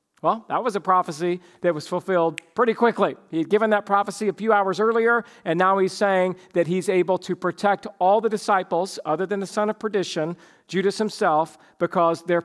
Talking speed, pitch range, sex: 200 wpm, 190-235 Hz, male